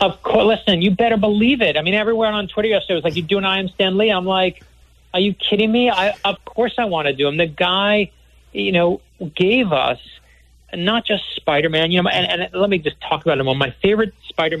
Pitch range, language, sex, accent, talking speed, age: 150-200 Hz, English, male, American, 250 wpm, 40-59